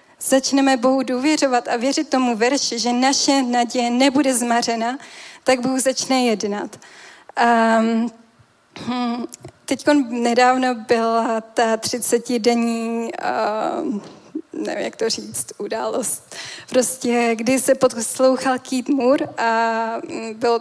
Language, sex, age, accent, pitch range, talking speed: Czech, female, 10-29, native, 230-270 Hz, 110 wpm